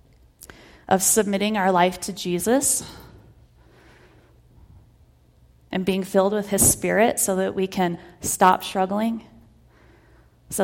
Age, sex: 30-49, female